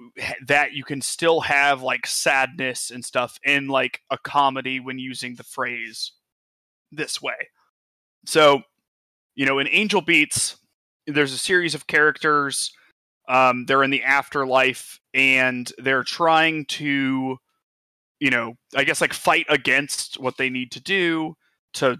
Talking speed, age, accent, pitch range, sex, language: 140 wpm, 20-39, American, 130-145 Hz, male, English